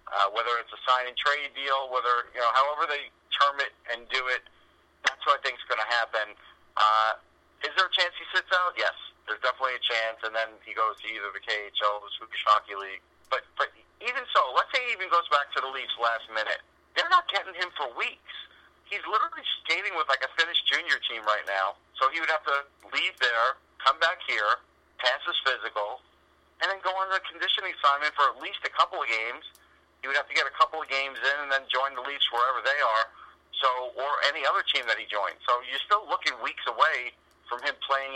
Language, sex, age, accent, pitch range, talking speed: English, male, 40-59, American, 110-145 Hz, 225 wpm